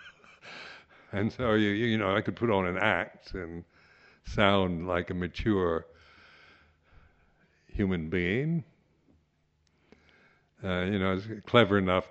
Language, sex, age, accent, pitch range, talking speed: English, male, 60-79, American, 80-110 Hz, 125 wpm